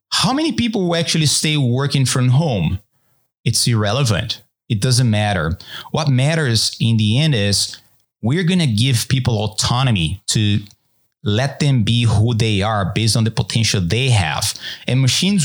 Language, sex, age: English, male, 30-49